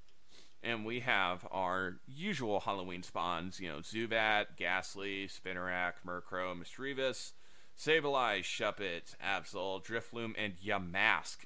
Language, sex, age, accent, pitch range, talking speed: English, male, 30-49, American, 95-115 Hz, 105 wpm